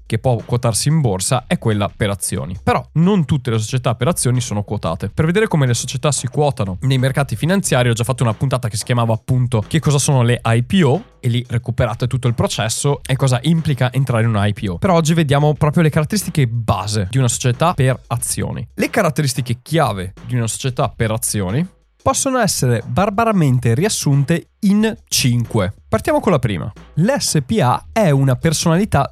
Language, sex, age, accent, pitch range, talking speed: Italian, male, 20-39, native, 115-160 Hz, 185 wpm